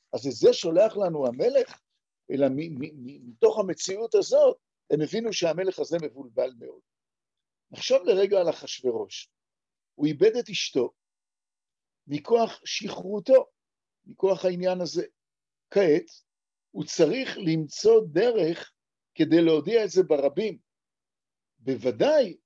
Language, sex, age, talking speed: Hebrew, male, 50-69, 105 wpm